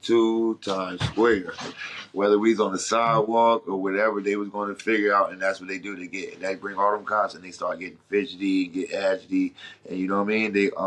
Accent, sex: American, male